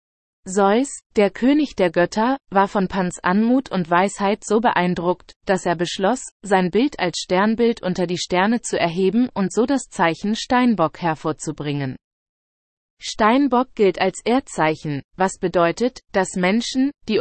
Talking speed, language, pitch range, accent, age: 140 wpm, English, 175-225 Hz, German, 30-49